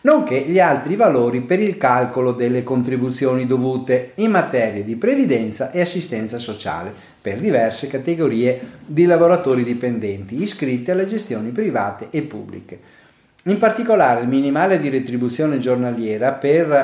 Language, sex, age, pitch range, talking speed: Italian, male, 40-59, 120-160 Hz, 130 wpm